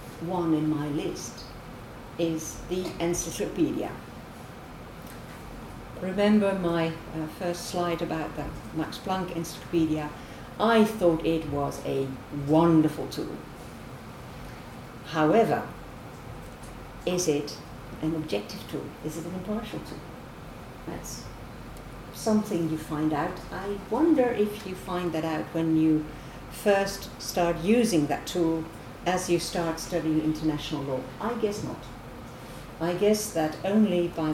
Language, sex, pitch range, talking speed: English, female, 155-190 Hz, 120 wpm